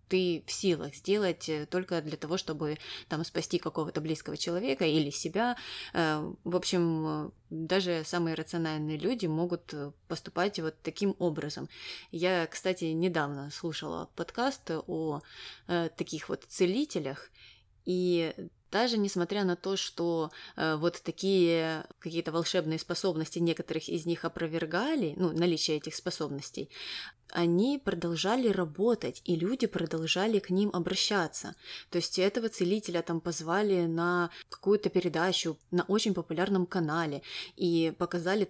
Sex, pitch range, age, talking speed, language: female, 160-185 Hz, 20-39, 120 wpm, Russian